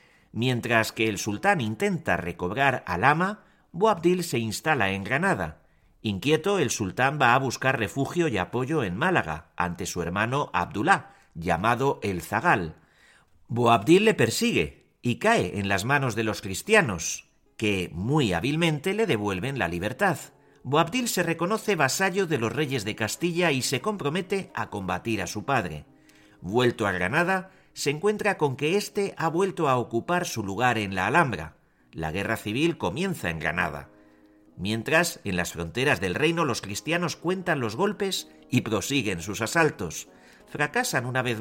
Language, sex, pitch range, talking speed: Spanish, male, 105-170 Hz, 155 wpm